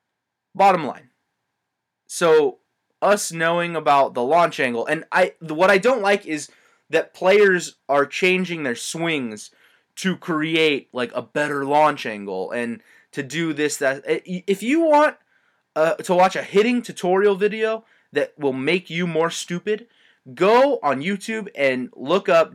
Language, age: English, 20-39